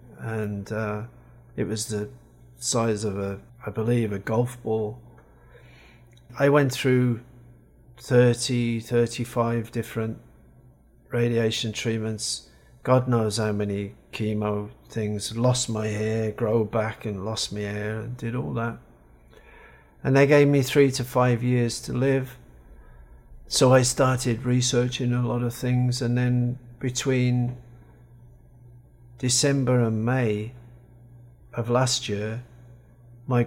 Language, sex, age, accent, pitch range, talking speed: English, male, 40-59, British, 110-125 Hz, 120 wpm